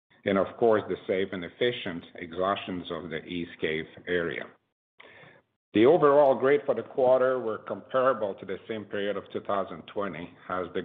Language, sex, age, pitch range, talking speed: English, male, 50-69, 95-120 Hz, 160 wpm